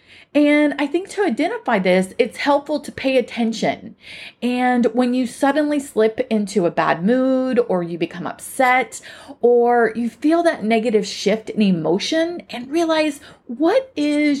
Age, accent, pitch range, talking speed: 30-49, American, 200-295 Hz, 150 wpm